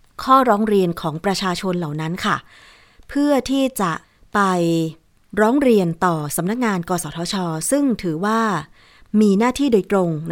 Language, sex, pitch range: Thai, female, 165-215 Hz